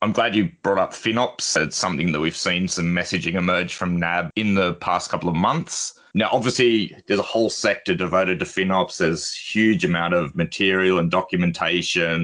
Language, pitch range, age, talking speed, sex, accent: English, 85-105 Hz, 30-49, 190 wpm, male, Australian